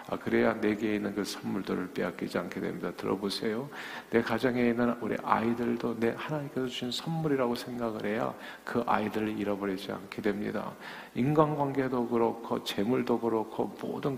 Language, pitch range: Korean, 105-140 Hz